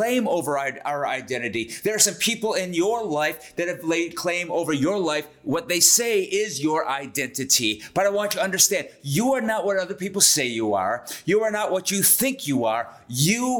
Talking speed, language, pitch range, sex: 210 wpm, English, 150-200 Hz, male